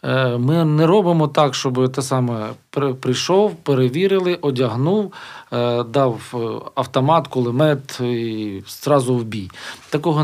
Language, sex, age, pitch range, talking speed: Ukrainian, male, 40-59, 120-160 Hz, 105 wpm